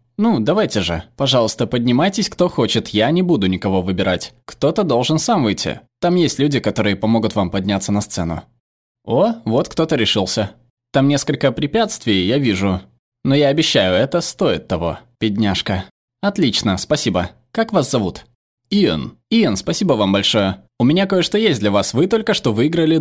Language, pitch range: Russian, 105-160 Hz